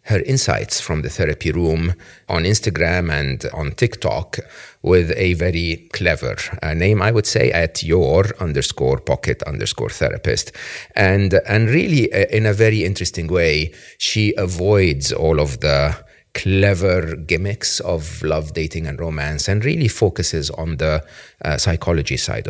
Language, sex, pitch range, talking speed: English, male, 80-105 Hz, 145 wpm